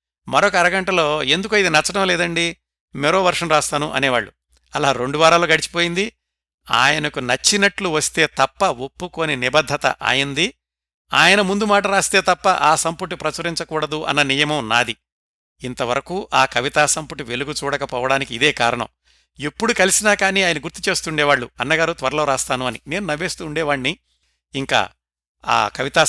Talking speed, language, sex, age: 125 wpm, Telugu, male, 60-79